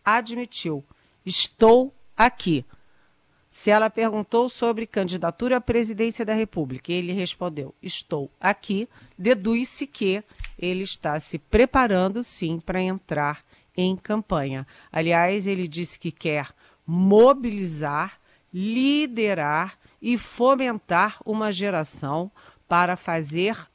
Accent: Brazilian